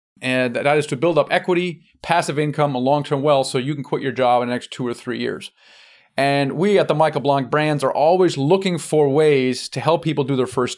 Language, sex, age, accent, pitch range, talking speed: English, male, 30-49, American, 130-160 Hz, 240 wpm